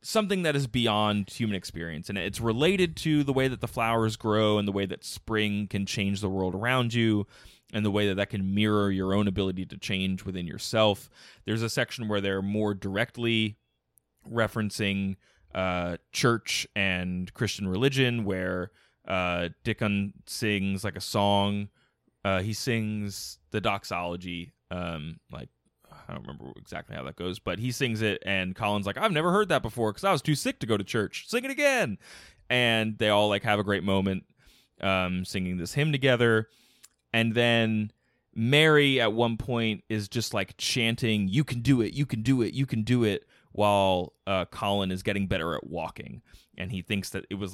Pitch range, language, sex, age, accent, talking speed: 95-120 Hz, English, male, 20-39, American, 185 wpm